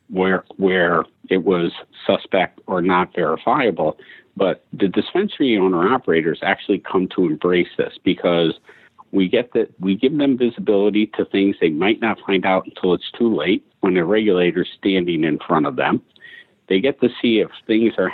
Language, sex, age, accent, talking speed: English, male, 50-69, American, 170 wpm